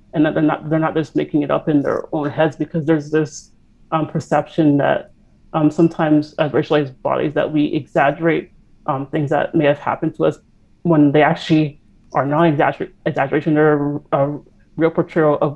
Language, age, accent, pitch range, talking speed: English, 30-49, American, 140-160 Hz, 185 wpm